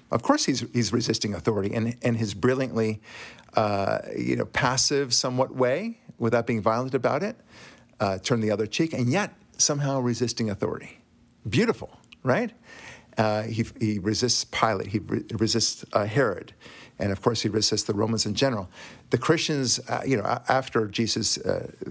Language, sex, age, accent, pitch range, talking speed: English, male, 50-69, American, 110-140 Hz, 160 wpm